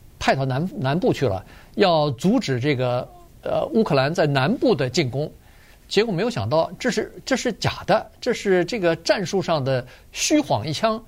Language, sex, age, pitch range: Chinese, male, 50-69, 125-190 Hz